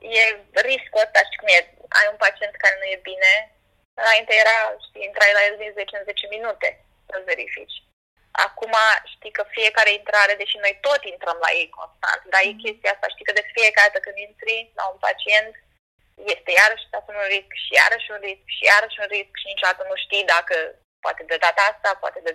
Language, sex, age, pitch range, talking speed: Romanian, female, 20-39, 195-225 Hz, 205 wpm